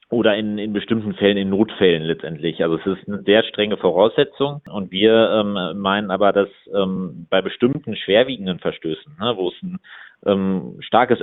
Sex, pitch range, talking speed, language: male, 95-110 Hz, 170 wpm, German